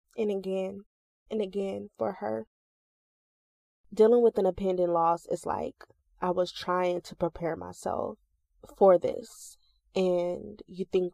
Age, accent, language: 20-39, American, English